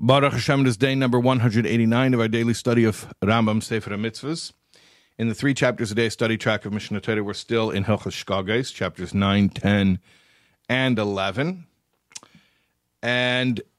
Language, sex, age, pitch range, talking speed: English, male, 50-69, 100-125 Hz, 155 wpm